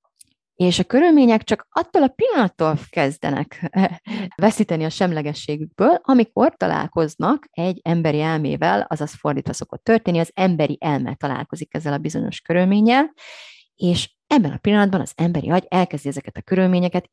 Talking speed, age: 135 wpm, 30-49